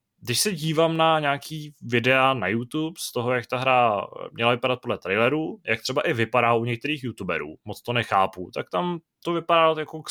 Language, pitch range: Czech, 110-135 Hz